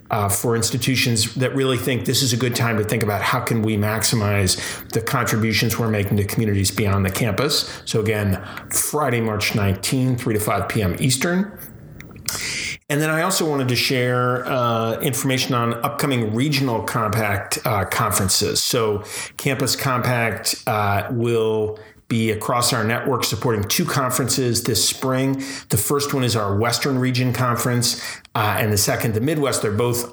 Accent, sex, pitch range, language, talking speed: American, male, 105-130 Hz, English, 165 wpm